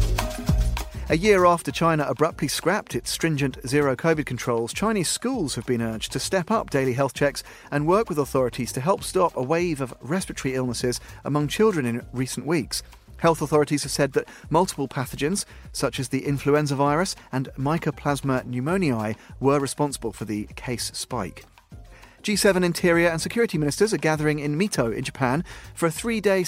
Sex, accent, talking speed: male, British, 165 wpm